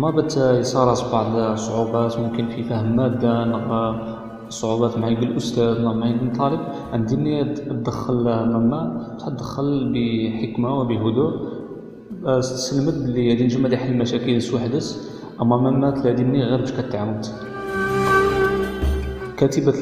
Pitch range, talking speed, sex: 115-130 Hz, 110 wpm, male